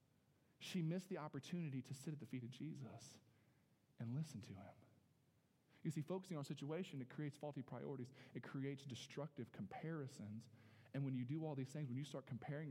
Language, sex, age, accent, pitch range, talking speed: English, male, 40-59, American, 120-155 Hz, 190 wpm